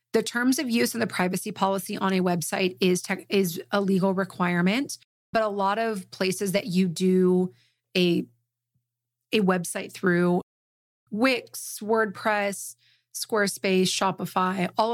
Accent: American